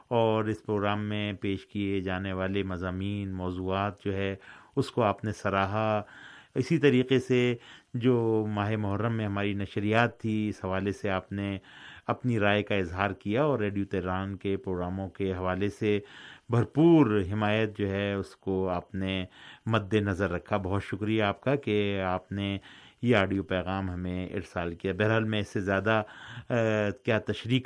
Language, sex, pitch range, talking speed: Urdu, male, 95-110 Hz, 165 wpm